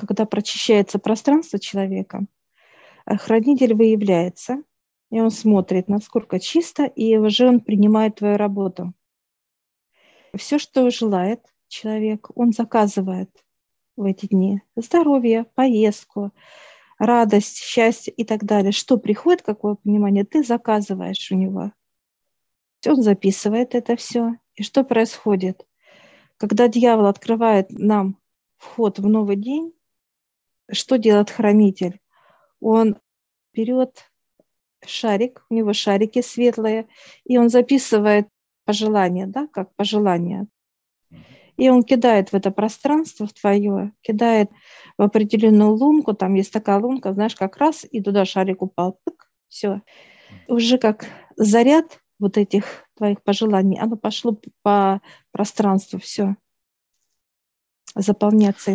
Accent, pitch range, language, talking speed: native, 200-235 Hz, Russian, 115 wpm